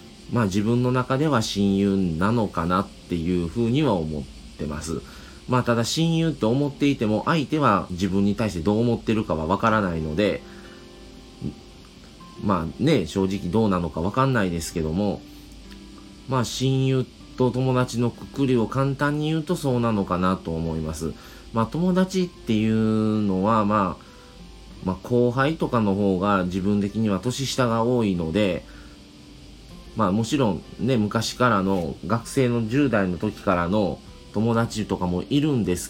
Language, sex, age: Japanese, male, 40-59